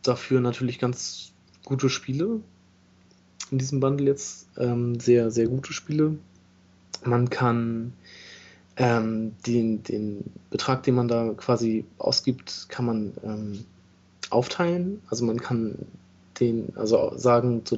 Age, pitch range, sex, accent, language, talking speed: 20-39, 110-130 Hz, male, German, German, 120 wpm